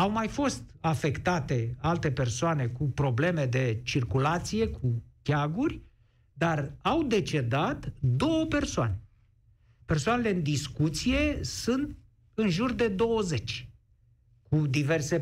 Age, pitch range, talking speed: 60-79, 115-160 Hz, 105 wpm